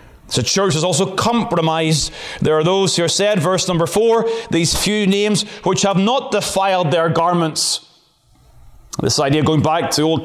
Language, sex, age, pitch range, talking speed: English, male, 30-49, 165-210 Hz, 175 wpm